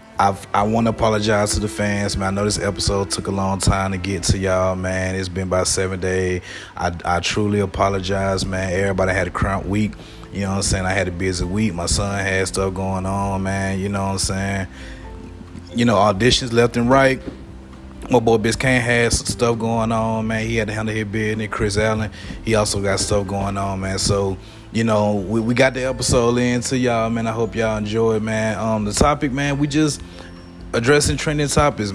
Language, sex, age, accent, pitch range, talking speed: English, male, 30-49, American, 95-115 Hz, 215 wpm